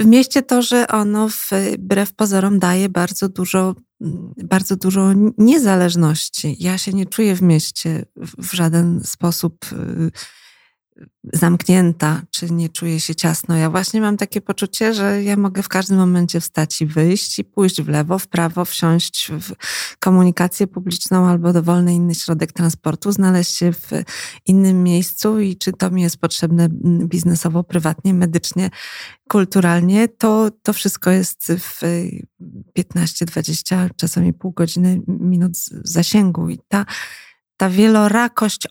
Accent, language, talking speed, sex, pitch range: native, Polish, 135 wpm, female, 170-195 Hz